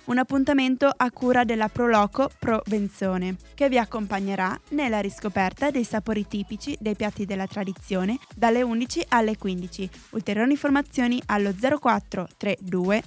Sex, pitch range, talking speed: female, 200-250 Hz, 135 wpm